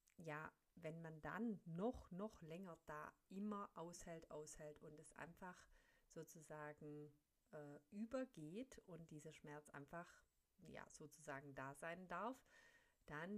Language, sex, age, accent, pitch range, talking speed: German, female, 50-69, German, 150-195 Hz, 120 wpm